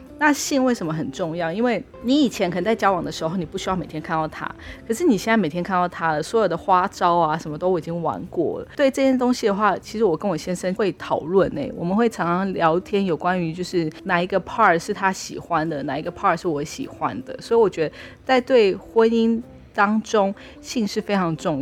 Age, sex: 20-39, female